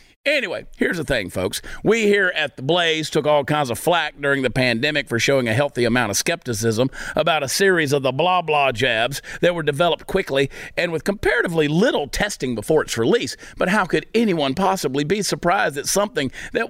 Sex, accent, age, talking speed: male, American, 50-69, 200 wpm